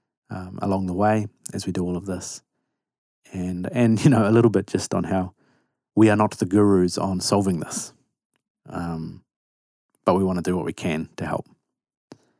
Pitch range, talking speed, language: 95-120 Hz, 190 wpm, English